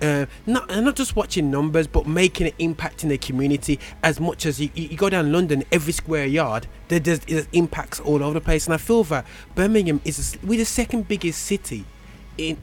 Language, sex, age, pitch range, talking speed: English, male, 20-39, 145-180 Hz, 205 wpm